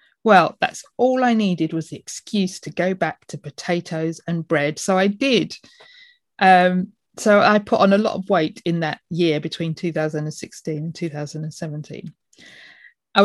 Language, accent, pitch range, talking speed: English, British, 165-210 Hz, 160 wpm